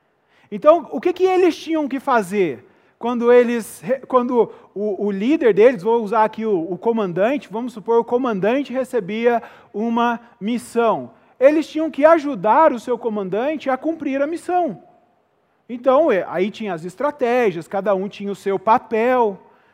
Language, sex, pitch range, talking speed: Portuguese, male, 220-275 Hz, 150 wpm